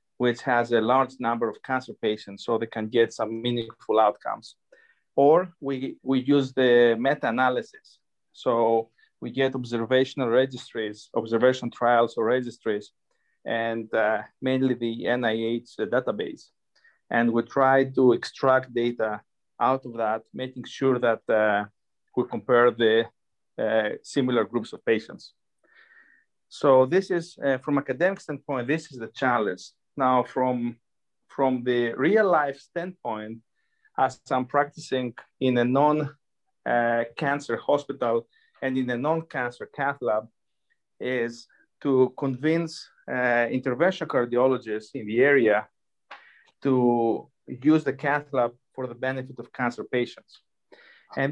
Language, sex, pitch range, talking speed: English, male, 115-140 Hz, 130 wpm